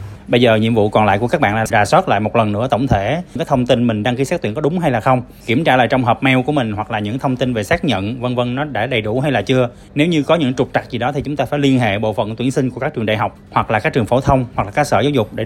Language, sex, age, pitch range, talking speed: Vietnamese, male, 20-39, 110-150 Hz, 355 wpm